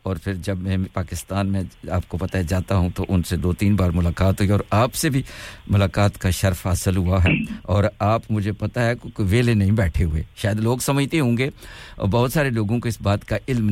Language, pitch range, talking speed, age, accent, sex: English, 95-120 Hz, 210 wpm, 50-69, Indian, male